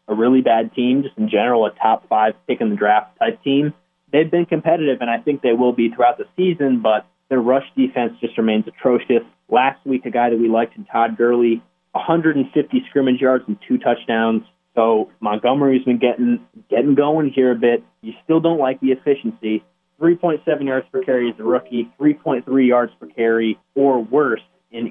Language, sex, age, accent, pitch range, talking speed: English, male, 20-39, American, 115-145 Hz, 180 wpm